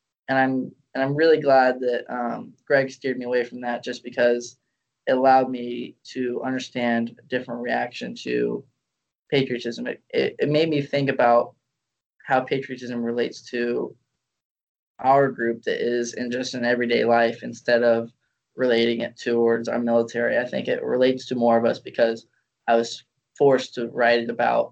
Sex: male